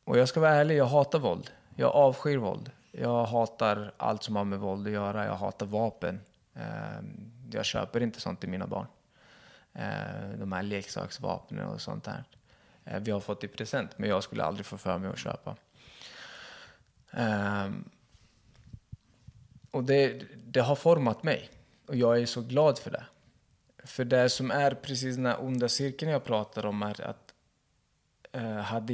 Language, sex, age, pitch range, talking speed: Swedish, male, 20-39, 105-130 Hz, 160 wpm